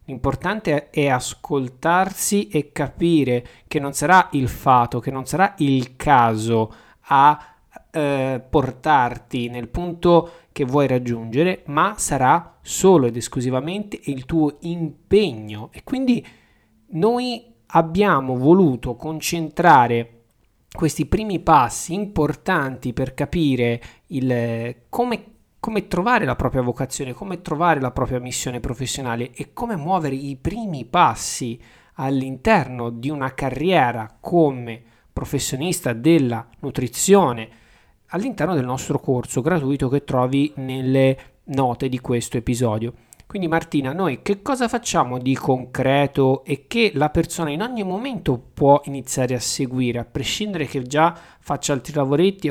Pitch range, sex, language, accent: 130-170 Hz, male, Italian, native